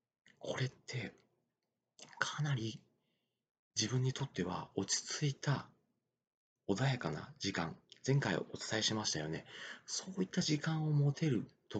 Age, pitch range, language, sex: 40-59, 105-160 Hz, Japanese, male